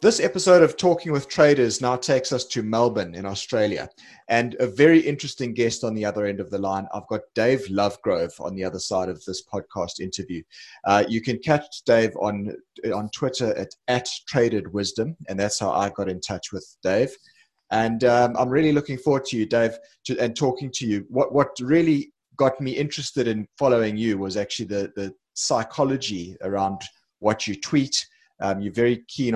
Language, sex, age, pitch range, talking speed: English, male, 30-49, 100-130 Hz, 190 wpm